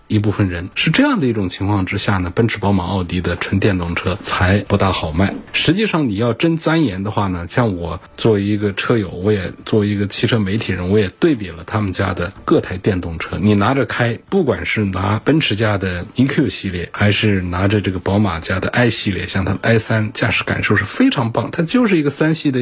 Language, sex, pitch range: Chinese, male, 100-130 Hz